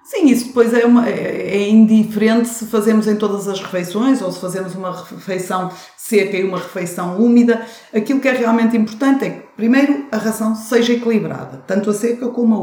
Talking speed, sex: 185 wpm, female